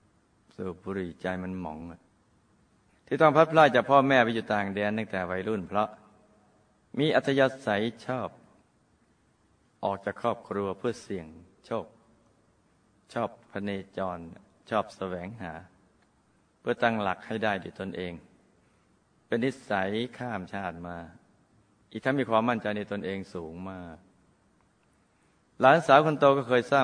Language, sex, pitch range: Thai, male, 95-125 Hz